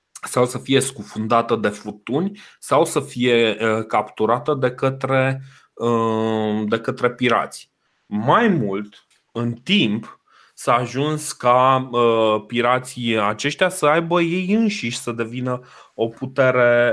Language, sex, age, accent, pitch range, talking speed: Romanian, male, 30-49, native, 110-130 Hz, 115 wpm